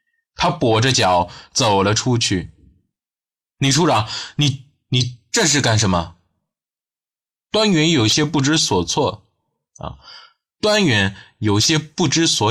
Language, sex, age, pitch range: Chinese, male, 20-39, 100-150 Hz